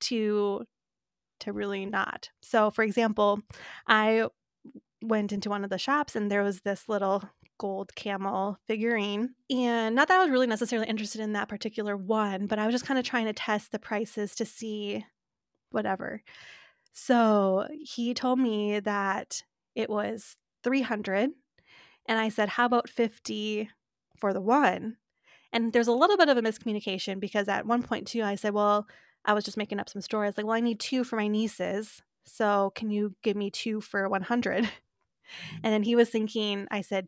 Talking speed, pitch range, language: 185 wpm, 205-240 Hz, English